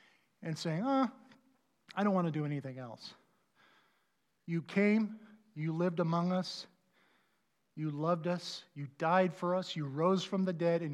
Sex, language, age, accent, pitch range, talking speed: male, English, 50-69, American, 155-210 Hz, 155 wpm